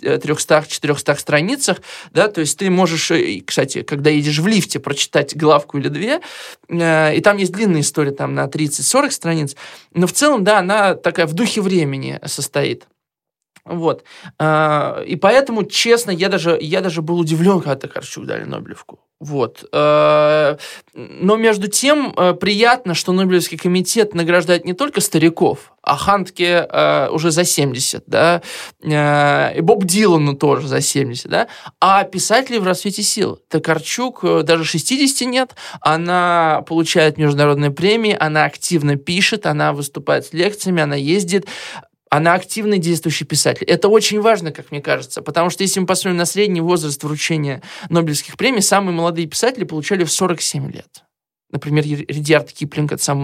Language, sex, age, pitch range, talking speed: Russian, male, 20-39, 150-195 Hz, 150 wpm